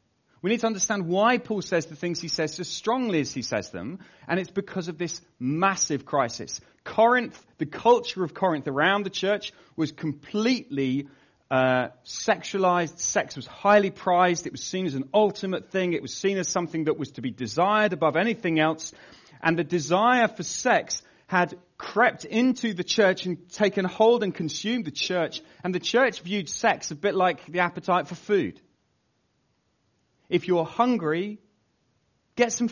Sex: male